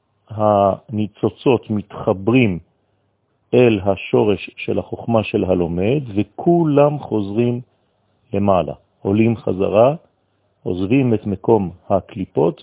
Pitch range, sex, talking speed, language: 100-120 Hz, male, 80 wpm, French